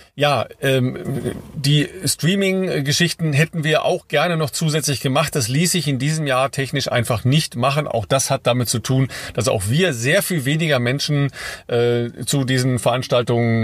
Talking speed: 160 wpm